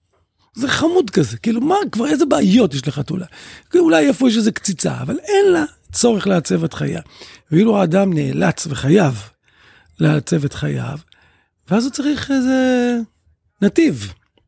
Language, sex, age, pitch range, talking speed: Hebrew, male, 50-69, 130-205 Hz, 145 wpm